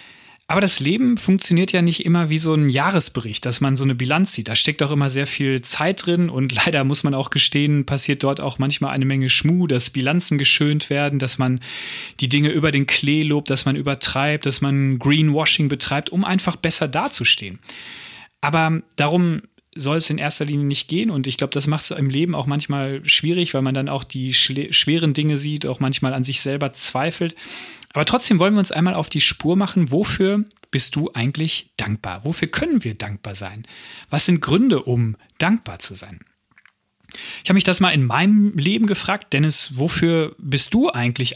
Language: German